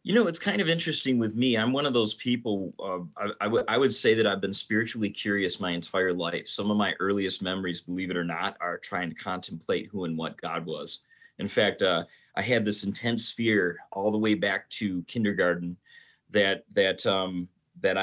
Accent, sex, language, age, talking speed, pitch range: American, male, English, 30-49, 205 wpm, 95-115 Hz